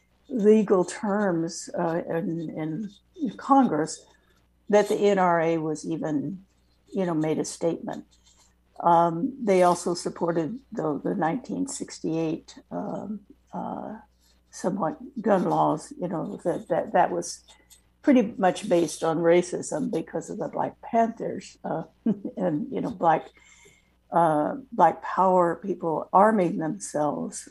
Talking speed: 120 wpm